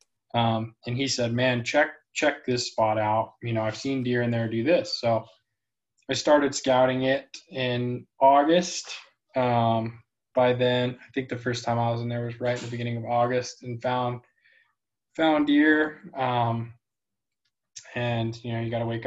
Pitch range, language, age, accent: 115-130 Hz, English, 20-39, American